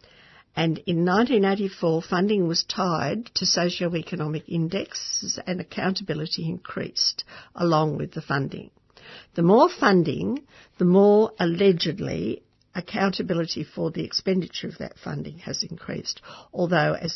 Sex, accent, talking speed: female, Australian, 115 wpm